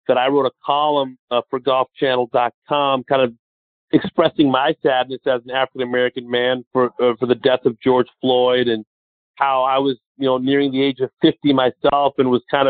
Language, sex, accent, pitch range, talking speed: English, male, American, 125-160 Hz, 190 wpm